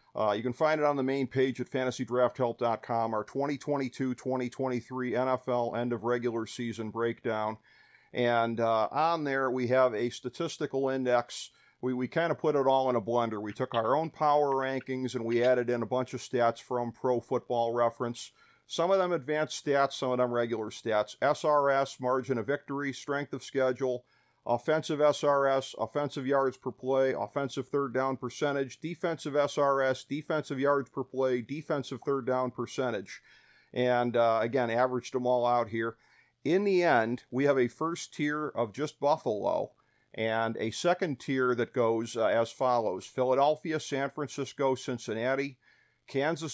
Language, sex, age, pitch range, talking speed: English, male, 50-69, 120-140 Hz, 160 wpm